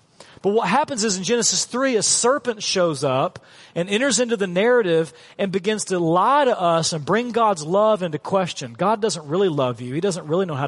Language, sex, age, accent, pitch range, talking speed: English, male, 40-59, American, 155-215 Hz, 215 wpm